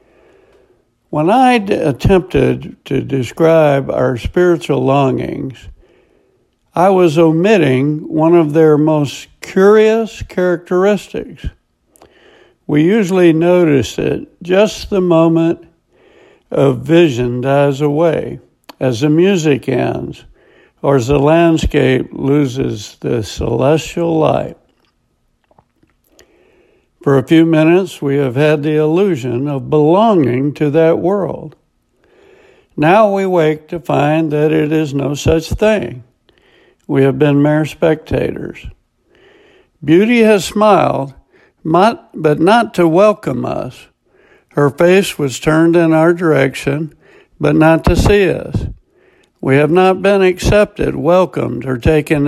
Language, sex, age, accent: English, male, 60-79, American